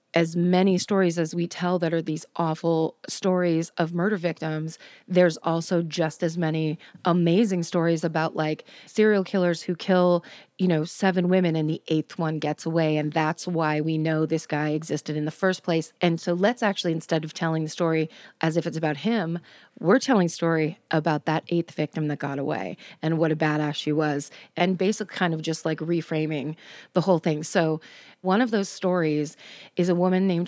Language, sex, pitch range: English, female, 160-180 Hz